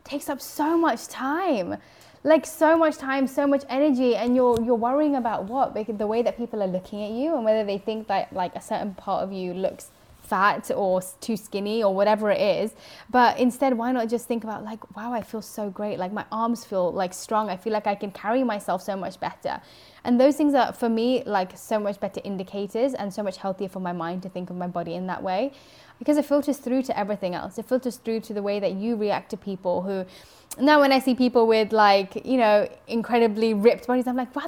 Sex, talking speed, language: female, 235 wpm, English